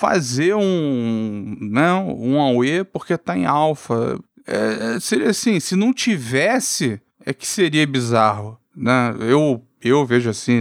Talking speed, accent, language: 145 wpm, Brazilian, Portuguese